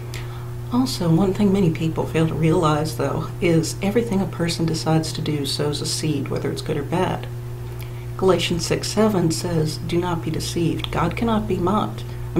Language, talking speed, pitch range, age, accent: English, 175 wpm, 120-165 Hz, 60-79, American